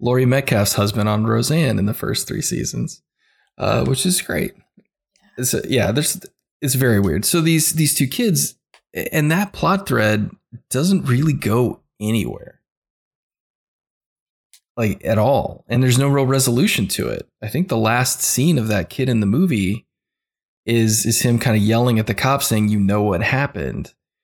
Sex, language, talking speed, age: male, English, 170 wpm, 20-39